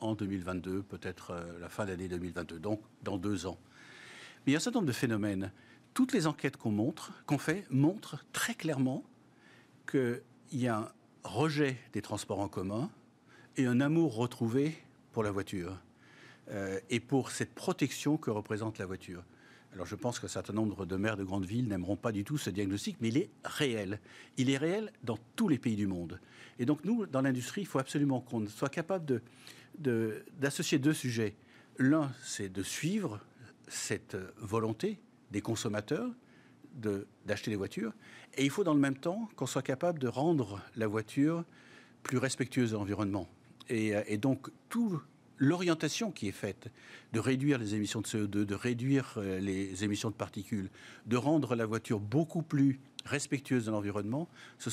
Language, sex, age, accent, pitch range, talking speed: French, male, 60-79, French, 105-145 Hz, 175 wpm